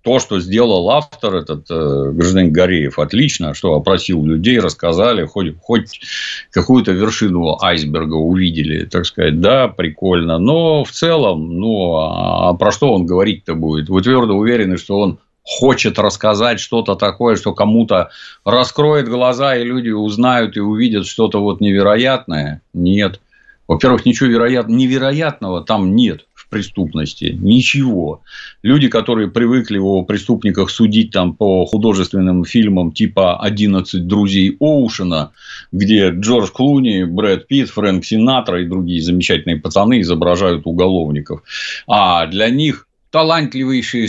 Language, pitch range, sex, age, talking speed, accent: Russian, 90-120 Hz, male, 50-69, 125 wpm, native